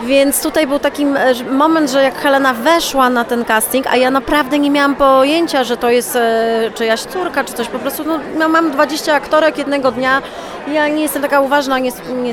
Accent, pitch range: native, 225-275 Hz